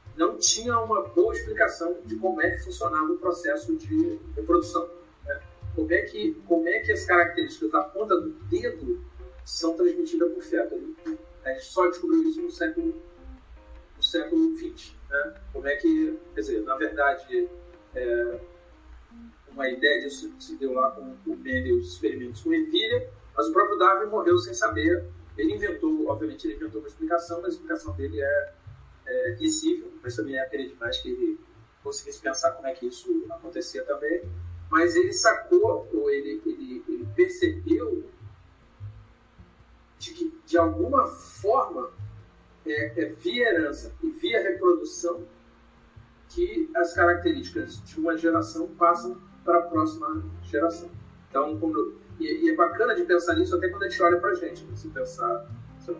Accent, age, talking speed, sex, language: Brazilian, 40-59, 160 wpm, male, Portuguese